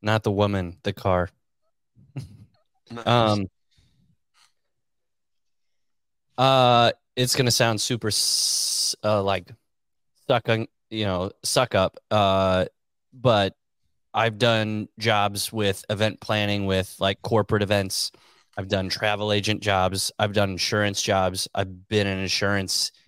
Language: English